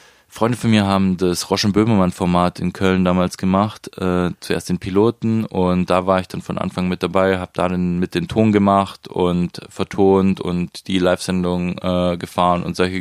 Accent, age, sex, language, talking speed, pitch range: German, 20-39, male, German, 180 wpm, 85-95 Hz